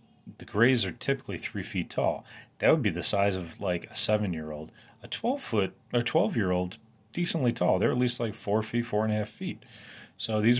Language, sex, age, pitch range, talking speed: English, male, 30-49, 95-120 Hz, 225 wpm